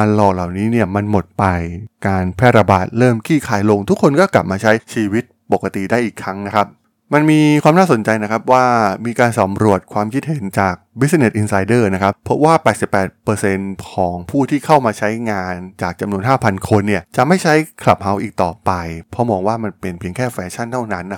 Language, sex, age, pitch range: Thai, male, 20-39, 100-125 Hz